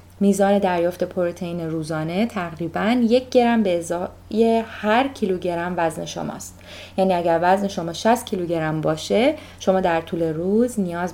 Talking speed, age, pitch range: 135 wpm, 30-49, 170-210 Hz